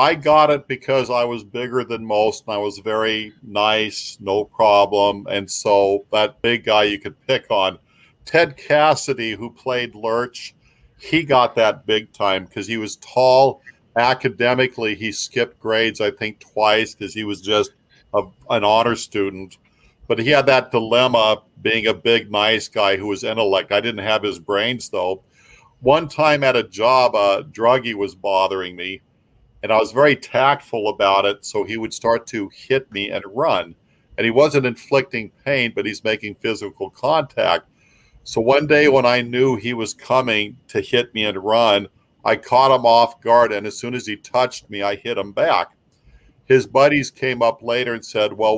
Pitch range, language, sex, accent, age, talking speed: 105-125 Hz, English, male, American, 50-69, 180 wpm